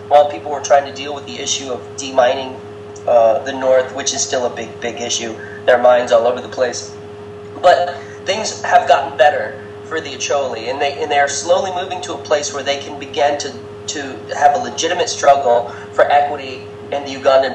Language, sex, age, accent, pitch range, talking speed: English, male, 30-49, American, 105-140 Hz, 210 wpm